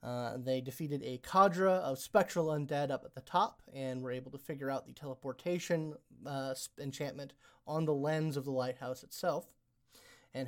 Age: 30-49